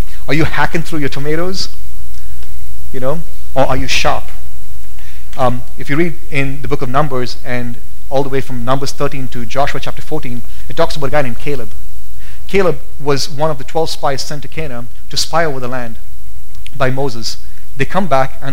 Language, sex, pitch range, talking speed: English, male, 115-150 Hz, 195 wpm